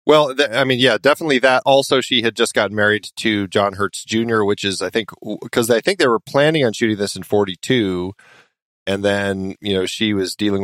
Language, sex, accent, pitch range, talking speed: English, male, American, 95-115 Hz, 215 wpm